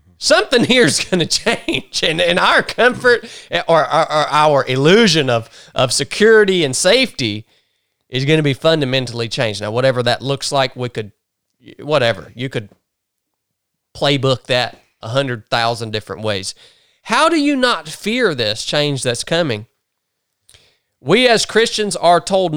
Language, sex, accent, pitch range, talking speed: English, male, American, 120-180 Hz, 145 wpm